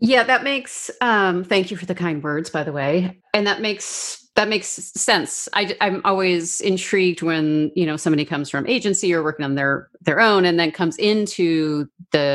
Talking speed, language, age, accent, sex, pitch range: 200 wpm, English, 30-49, American, female, 165-205 Hz